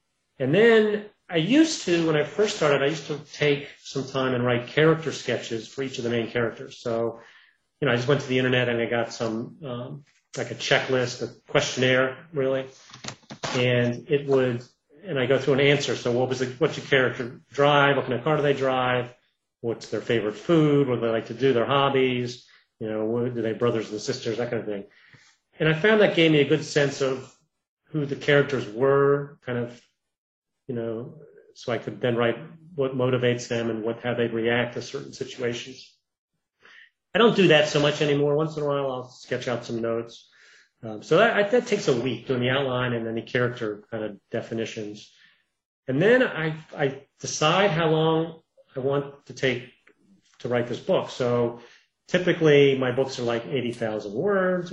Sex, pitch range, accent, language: male, 120-150 Hz, American, English